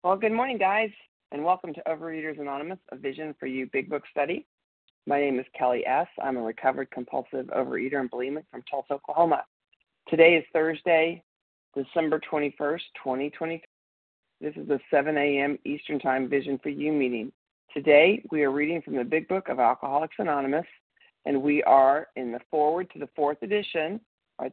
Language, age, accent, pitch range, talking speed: English, 40-59, American, 135-160 Hz, 170 wpm